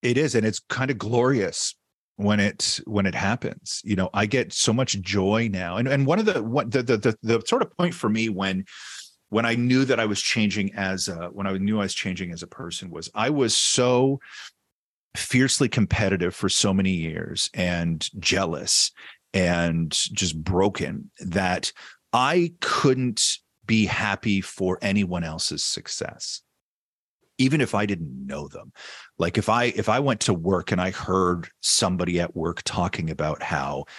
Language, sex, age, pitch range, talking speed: English, male, 40-59, 85-110 Hz, 180 wpm